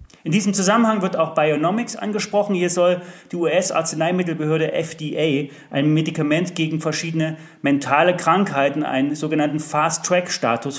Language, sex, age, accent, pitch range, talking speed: German, male, 40-59, German, 140-175 Hz, 115 wpm